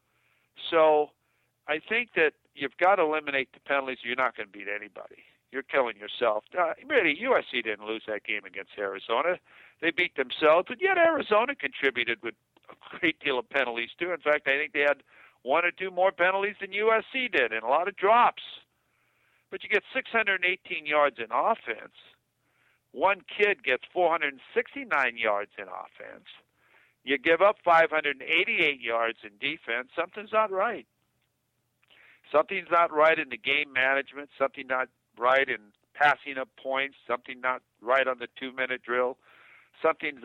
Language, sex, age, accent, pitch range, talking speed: English, male, 60-79, American, 125-170 Hz, 160 wpm